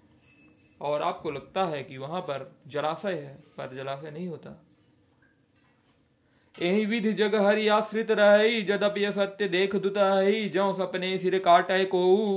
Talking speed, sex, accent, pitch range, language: 130 wpm, male, native, 160-200 Hz, Hindi